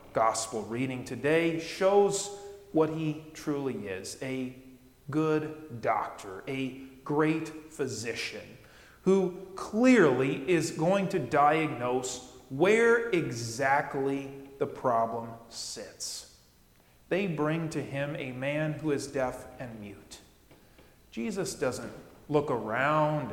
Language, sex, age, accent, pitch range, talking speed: English, male, 30-49, American, 135-190 Hz, 105 wpm